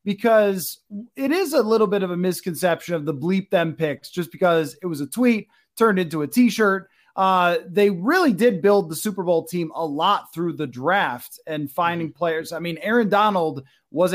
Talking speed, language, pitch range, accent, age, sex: 190 wpm, English, 175-235 Hz, American, 20-39, male